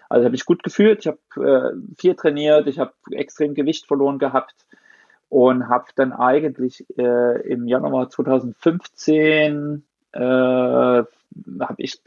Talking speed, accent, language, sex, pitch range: 120 wpm, German, German, male, 125-155 Hz